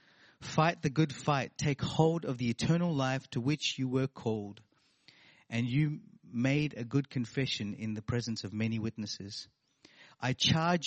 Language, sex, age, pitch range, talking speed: English, male, 30-49, 115-150 Hz, 160 wpm